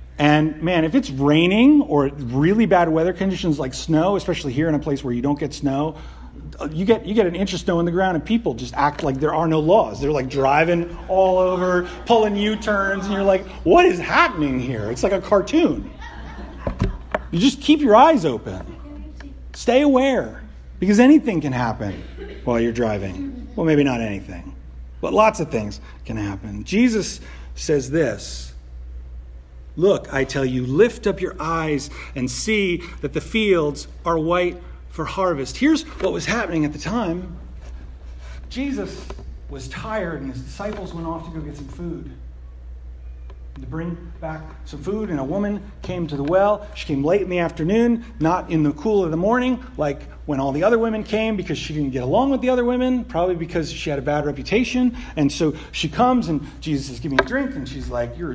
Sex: male